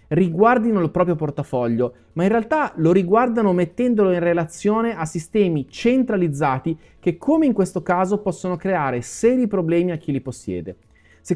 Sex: male